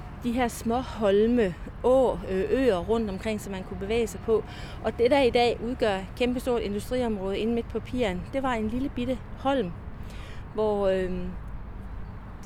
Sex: female